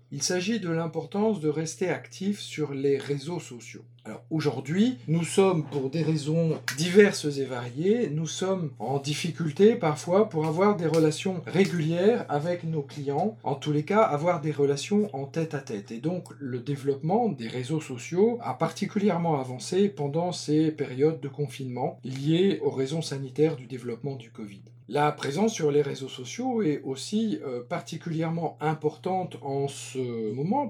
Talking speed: 160 wpm